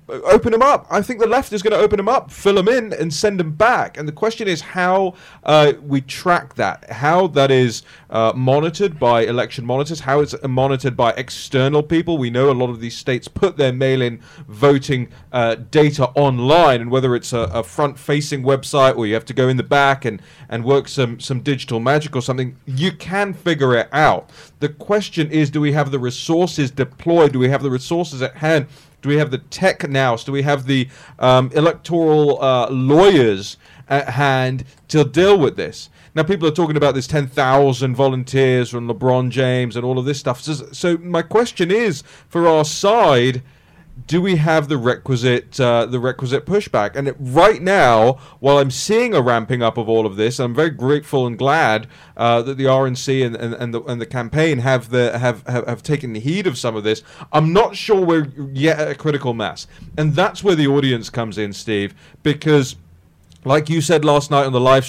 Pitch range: 125-155 Hz